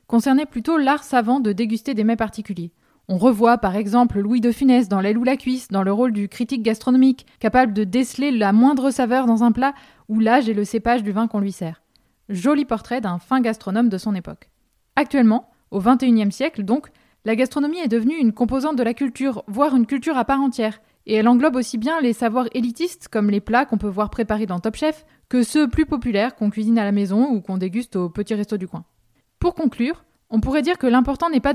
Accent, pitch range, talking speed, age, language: French, 210-265 Hz, 225 wpm, 20-39, French